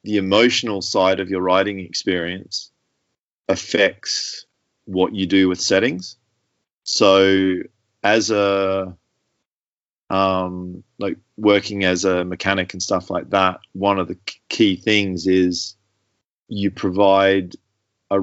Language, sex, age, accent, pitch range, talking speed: English, male, 30-49, Australian, 95-105 Hz, 115 wpm